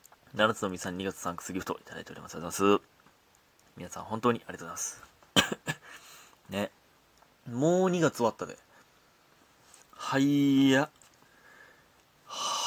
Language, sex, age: Japanese, male, 30-49